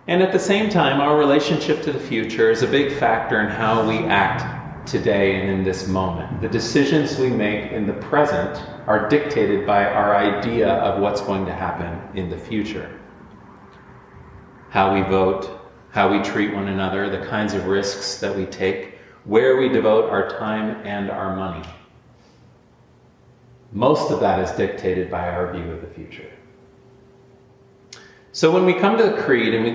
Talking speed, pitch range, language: 175 wpm, 95-125 Hz, English